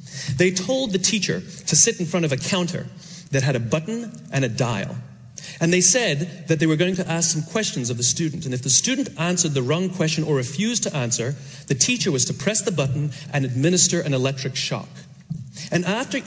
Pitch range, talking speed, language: 135-180 Hz, 215 wpm, English